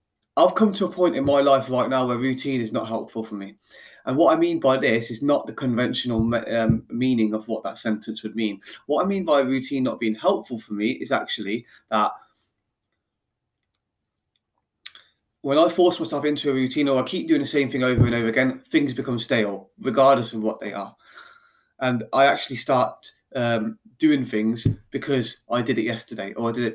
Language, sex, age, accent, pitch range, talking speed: English, male, 20-39, British, 115-140 Hz, 200 wpm